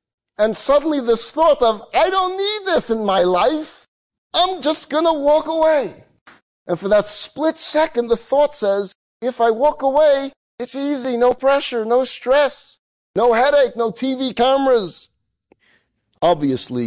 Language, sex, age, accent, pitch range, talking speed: English, male, 40-59, American, 155-260 Hz, 150 wpm